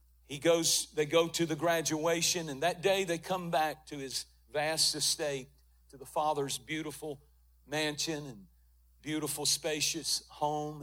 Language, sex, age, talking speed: English, male, 50-69, 145 wpm